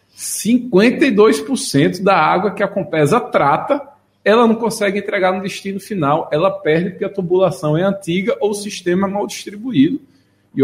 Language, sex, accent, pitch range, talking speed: Portuguese, male, Brazilian, 145-235 Hz, 150 wpm